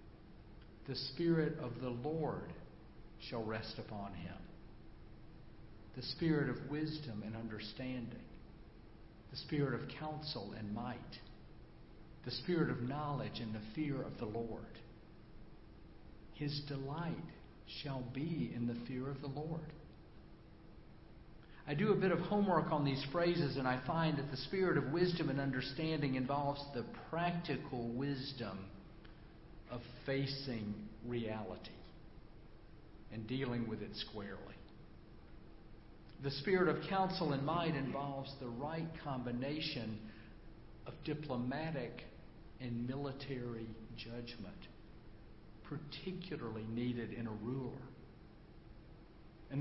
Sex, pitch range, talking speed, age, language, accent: male, 115-150 Hz, 110 wpm, 50-69, English, American